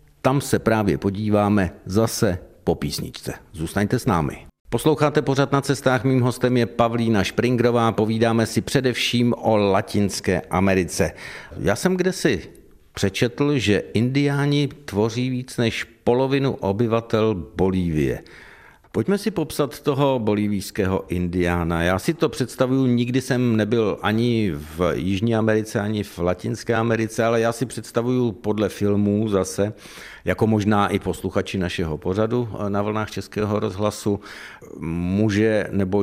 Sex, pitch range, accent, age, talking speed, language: male, 95-120 Hz, native, 60-79, 130 wpm, Czech